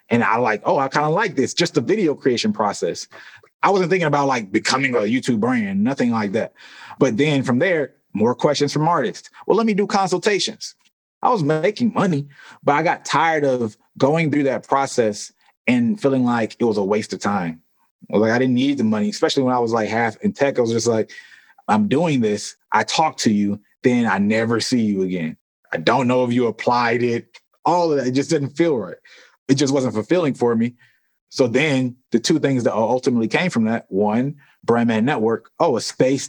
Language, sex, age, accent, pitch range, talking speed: English, male, 20-39, American, 120-175 Hz, 215 wpm